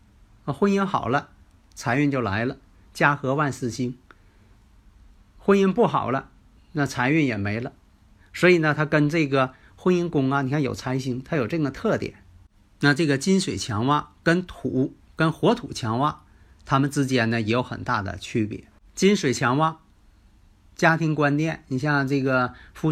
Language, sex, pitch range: Chinese, male, 105-150 Hz